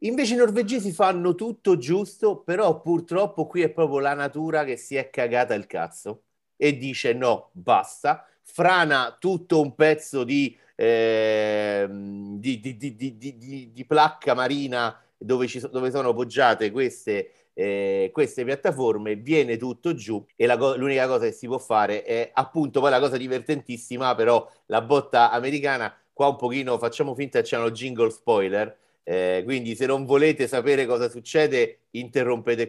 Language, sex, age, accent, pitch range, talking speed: Italian, male, 30-49, native, 120-160 Hz, 165 wpm